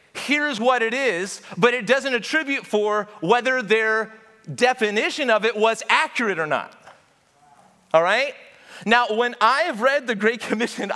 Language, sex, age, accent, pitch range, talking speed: English, male, 30-49, American, 210-290 Hz, 150 wpm